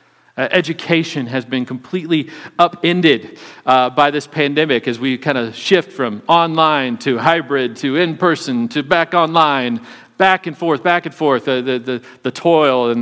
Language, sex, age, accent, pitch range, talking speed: English, male, 40-59, American, 125-160 Hz, 165 wpm